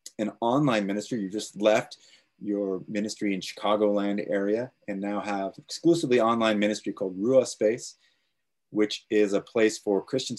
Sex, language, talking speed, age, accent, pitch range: male, English, 150 wpm, 30-49, American, 100-115 Hz